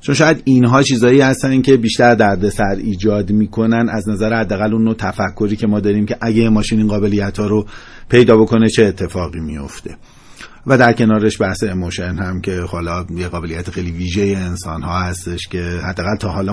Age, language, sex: 40-59, Persian, male